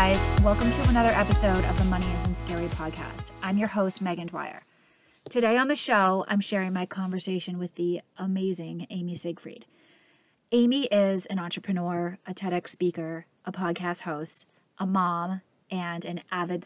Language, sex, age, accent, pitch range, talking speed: English, female, 20-39, American, 175-210 Hz, 160 wpm